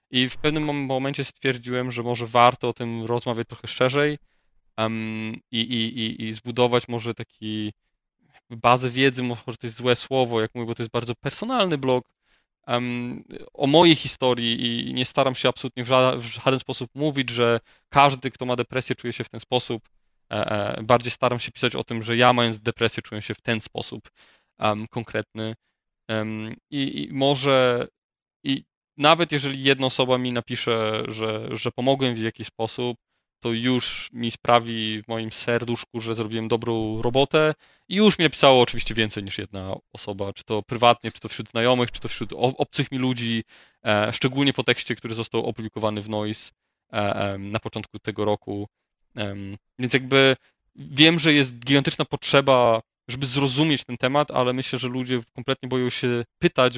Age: 20-39